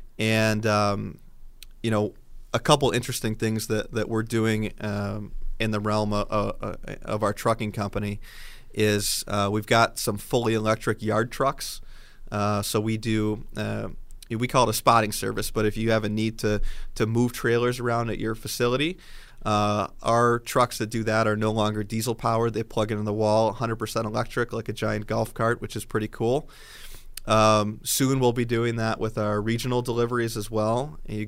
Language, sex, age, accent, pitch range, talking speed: English, male, 20-39, American, 105-120 Hz, 185 wpm